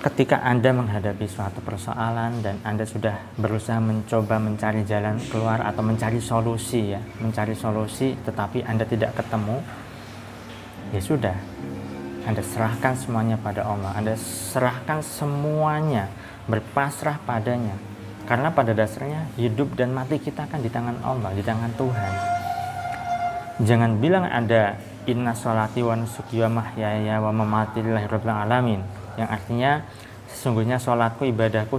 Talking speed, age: 125 wpm, 20-39